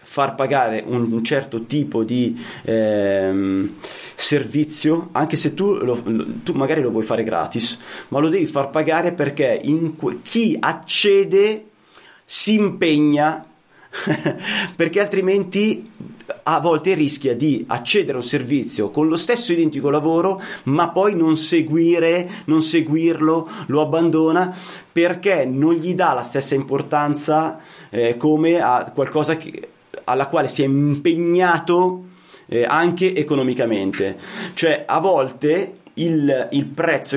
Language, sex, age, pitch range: Italian, male, 30-49, 135-170 Hz